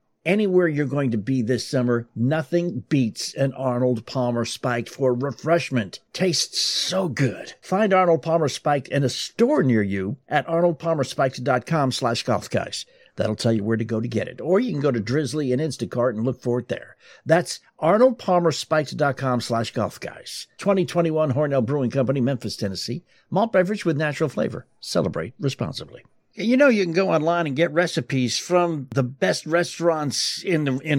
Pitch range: 125-170 Hz